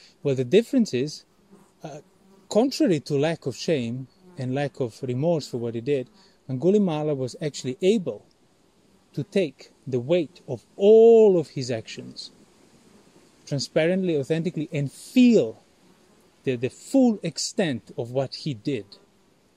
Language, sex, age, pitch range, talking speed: English, male, 30-49, 135-190 Hz, 130 wpm